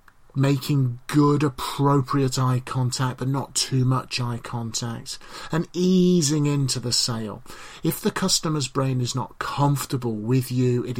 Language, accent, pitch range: English, British, 110-140 Hz